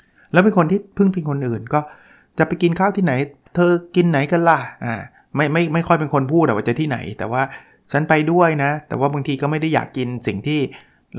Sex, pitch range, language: male, 125-155 Hz, Thai